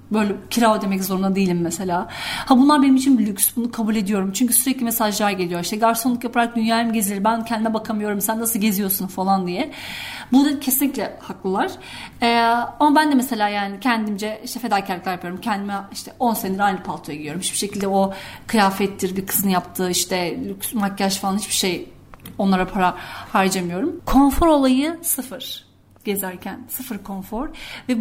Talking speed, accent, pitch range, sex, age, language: 165 wpm, native, 200-275 Hz, female, 40-59, Turkish